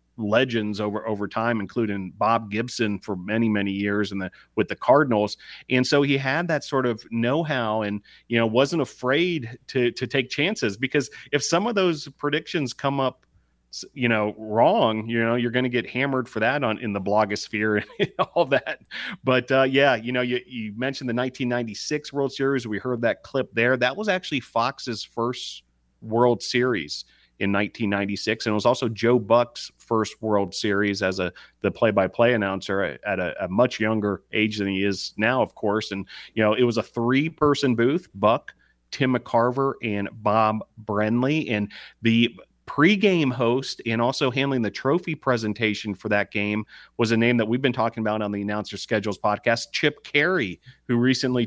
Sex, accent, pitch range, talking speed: male, American, 105-130 Hz, 185 wpm